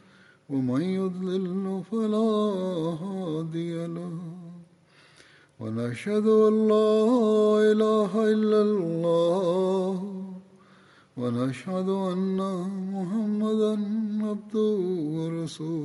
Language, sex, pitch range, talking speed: Bulgarian, male, 165-210 Hz, 40 wpm